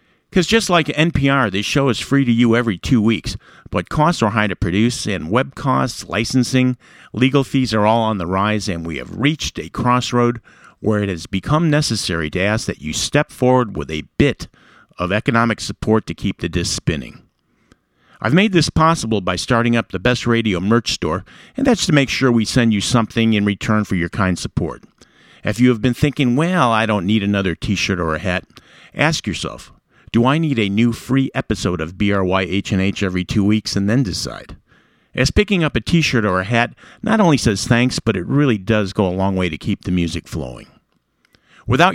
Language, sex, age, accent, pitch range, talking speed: English, male, 50-69, American, 100-135 Hz, 205 wpm